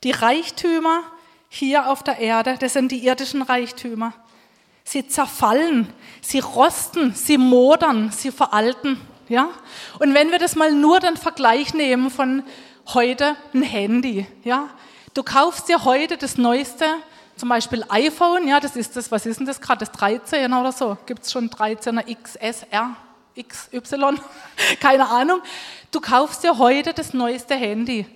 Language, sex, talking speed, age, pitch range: German, female, 150 wpm, 30-49, 235-305 Hz